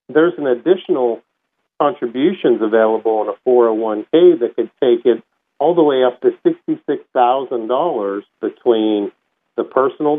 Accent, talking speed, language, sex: American, 140 wpm, English, male